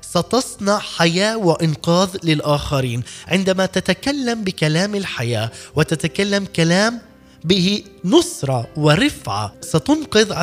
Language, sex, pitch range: Arabic, male, 160-210 Hz